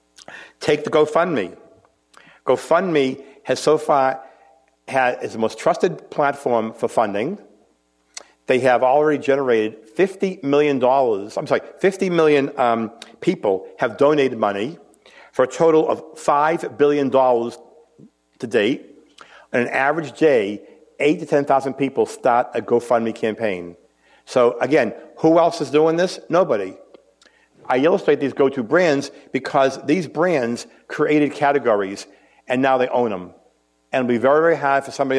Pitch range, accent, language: 120-150 Hz, American, English